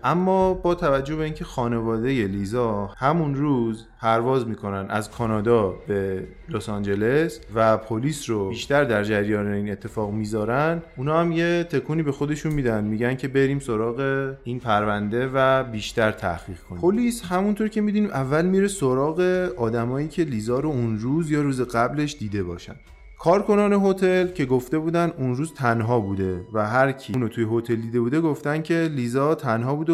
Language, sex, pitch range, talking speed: Persian, male, 110-155 Hz, 165 wpm